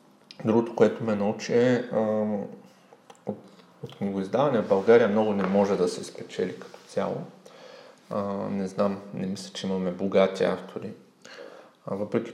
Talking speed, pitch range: 140 wpm, 100-115 Hz